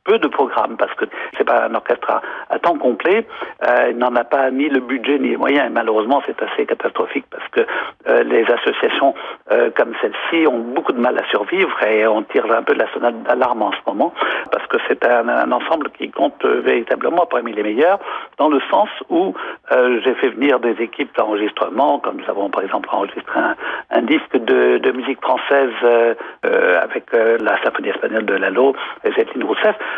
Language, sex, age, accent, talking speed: French, male, 60-79, French, 205 wpm